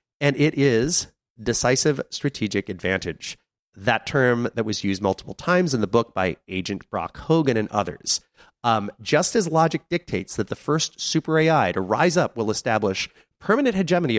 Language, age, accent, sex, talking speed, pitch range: English, 30-49, American, male, 165 wpm, 100-145 Hz